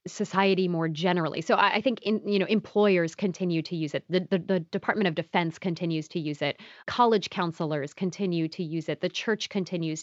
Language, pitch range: English, 165-200 Hz